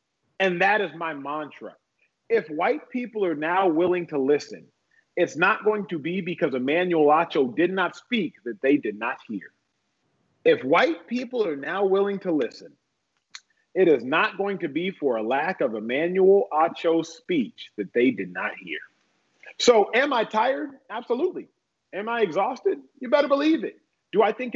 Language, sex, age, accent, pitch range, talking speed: English, male, 40-59, American, 175-245 Hz, 170 wpm